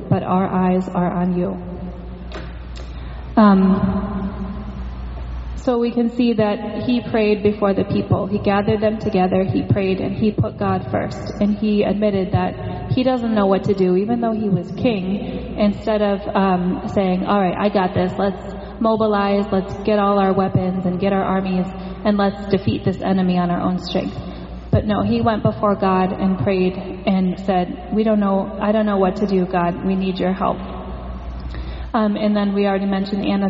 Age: 30-49